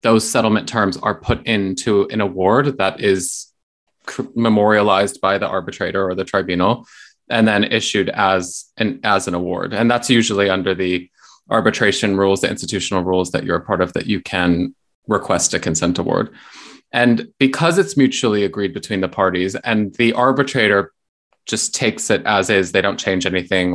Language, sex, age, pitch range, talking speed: English, male, 20-39, 95-120 Hz, 170 wpm